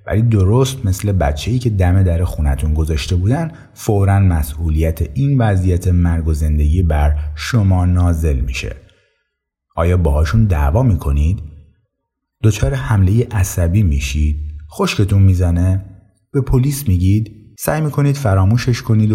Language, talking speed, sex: Persian, 120 wpm, male